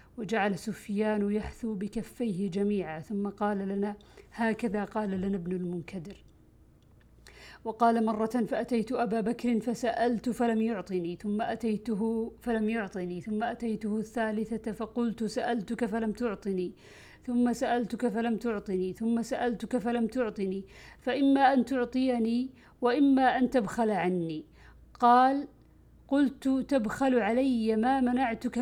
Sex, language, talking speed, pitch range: female, Arabic, 110 wpm, 195-235 Hz